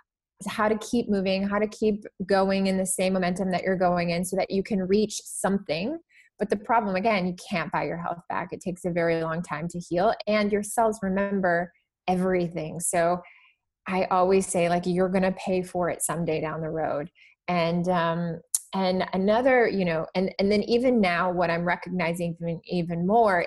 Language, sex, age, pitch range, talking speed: English, female, 20-39, 175-200 Hz, 195 wpm